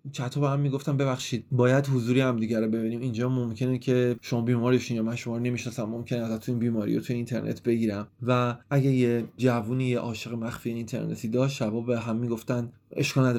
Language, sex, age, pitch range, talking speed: Persian, male, 30-49, 115-130 Hz, 180 wpm